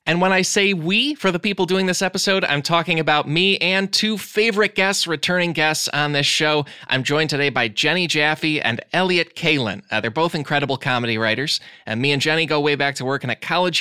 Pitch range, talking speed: 125-175 Hz, 220 wpm